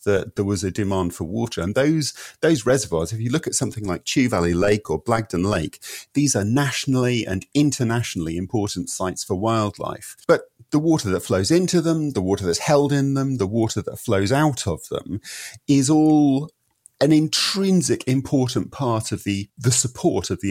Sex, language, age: male, English, 40-59